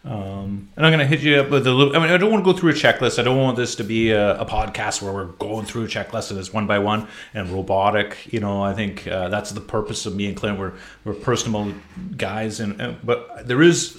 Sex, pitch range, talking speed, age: male, 100-130 Hz, 270 wpm, 30-49